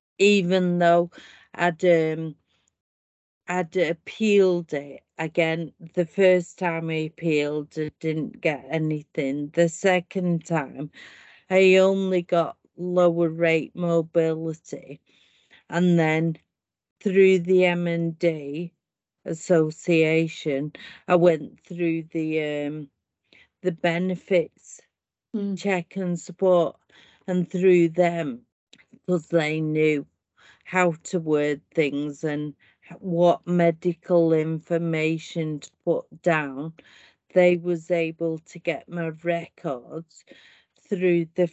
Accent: British